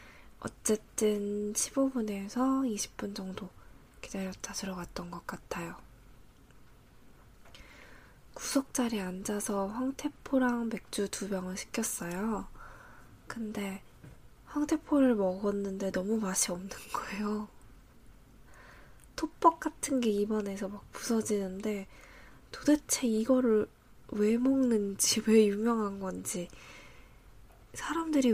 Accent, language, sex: native, Korean, female